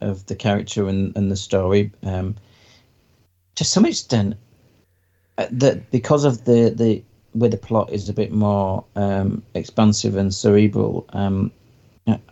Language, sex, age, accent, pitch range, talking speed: English, male, 40-59, British, 95-110 Hz, 140 wpm